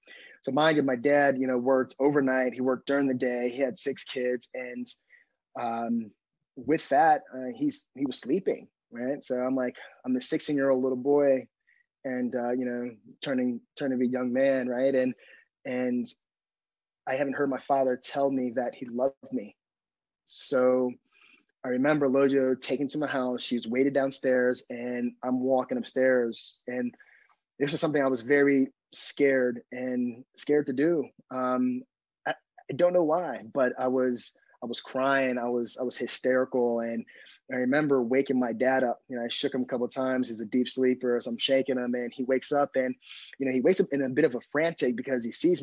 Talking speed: 200 wpm